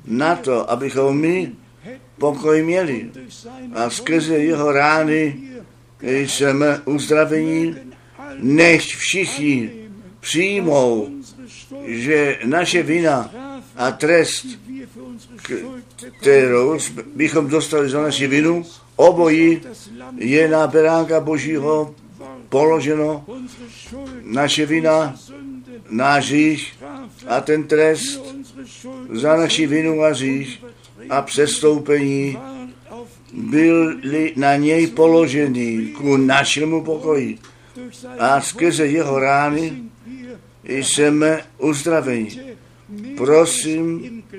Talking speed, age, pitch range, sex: 80 wpm, 60-79, 135-170 Hz, male